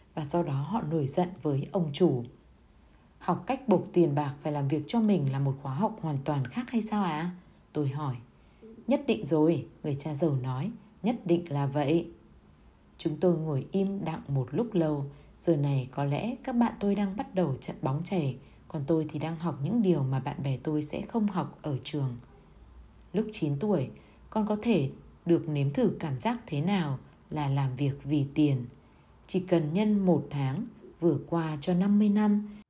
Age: 20-39